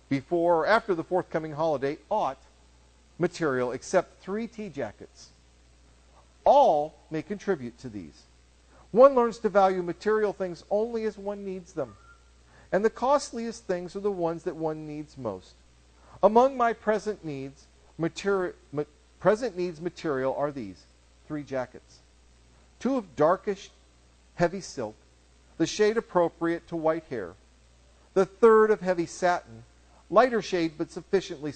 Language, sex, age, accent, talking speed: English, male, 50-69, American, 130 wpm